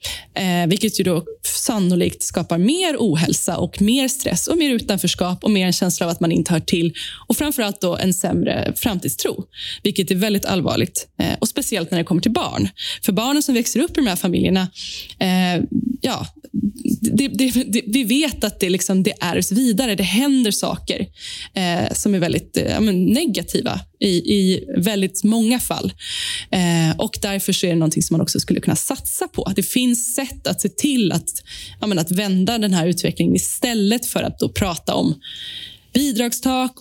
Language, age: Swedish, 10-29